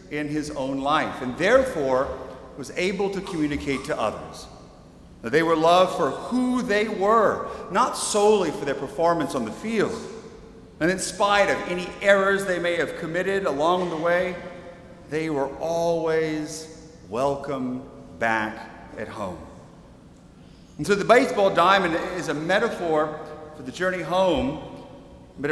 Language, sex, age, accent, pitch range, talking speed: English, male, 40-59, American, 145-180 Hz, 145 wpm